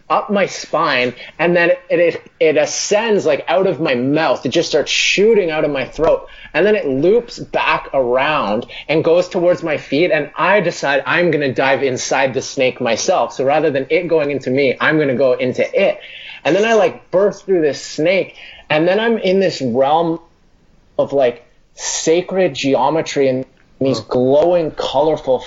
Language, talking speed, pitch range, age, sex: English, 185 wpm, 125-180 Hz, 30-49, male